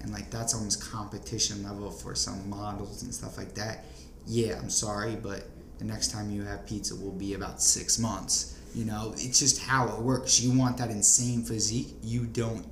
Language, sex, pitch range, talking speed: English, male, 100-120 Hz, 200 wpm